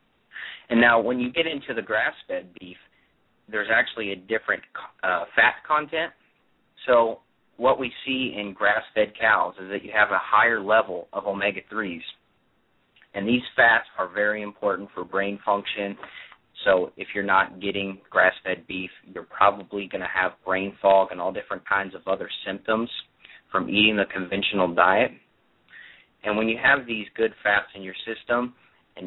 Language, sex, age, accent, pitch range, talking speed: English, male, 30-49, American, 95-115 Hz, 160 wpm